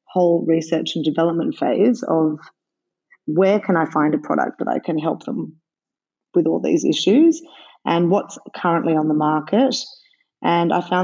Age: 30-49